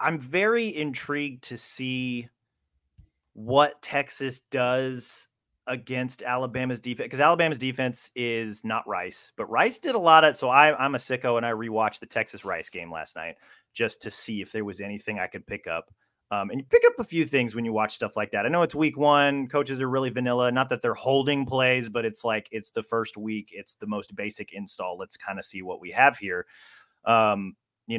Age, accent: 30-49, American